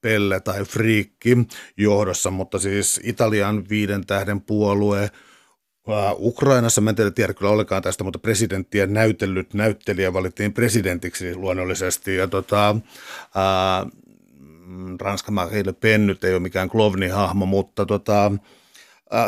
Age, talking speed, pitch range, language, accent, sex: 60-79, 110 wpm, 95-115 Hz, Finnish, native, male